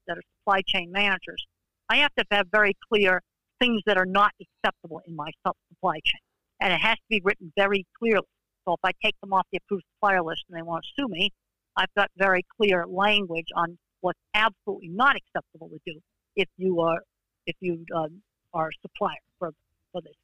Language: English